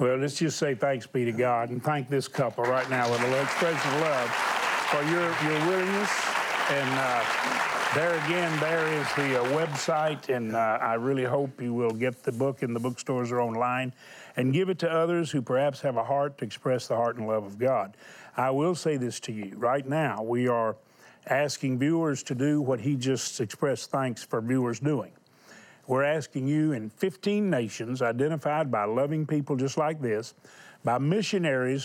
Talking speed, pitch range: 190 wpm, 125-155 Hz